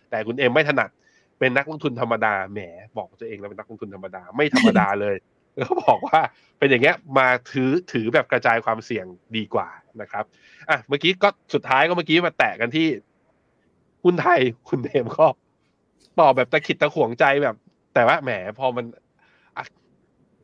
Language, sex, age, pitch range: Thai, male, 20-39, 120-180 Hz